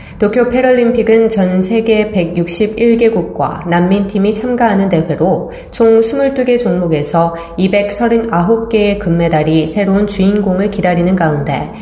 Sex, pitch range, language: female, 170-220 Hz, Korean